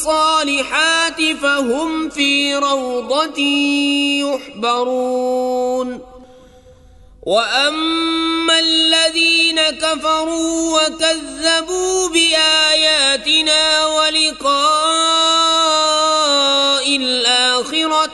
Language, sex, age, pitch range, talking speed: English, male, 30-49, 255-315 Hz, 40 wpm